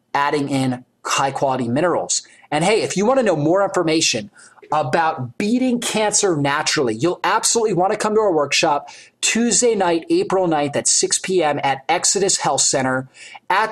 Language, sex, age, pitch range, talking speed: English, male, 30-49, 155-205 Hz, 160 wpm